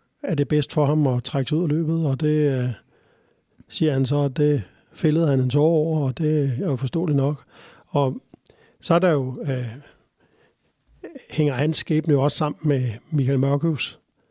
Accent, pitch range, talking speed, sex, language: native, 140-170 Hz, 185 wpm, male, Danish